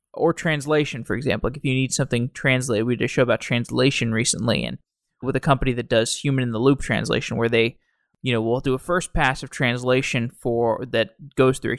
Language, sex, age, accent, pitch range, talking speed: English, male, 20-39, American, 120-150 Hz, 210 wpm